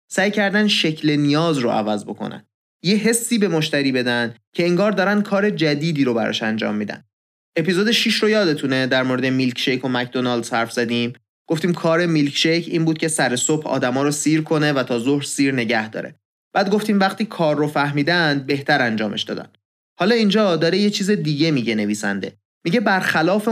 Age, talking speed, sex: 30-49, 185 wpm, male